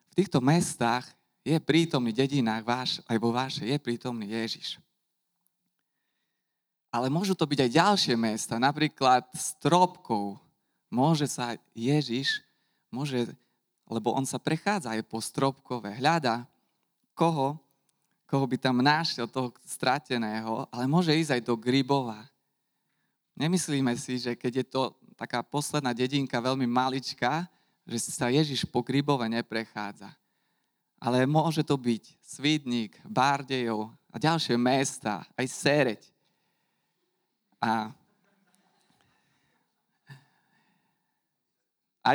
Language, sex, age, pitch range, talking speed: Slovak, male, 20-39, 120-155 Hz, 105 wpm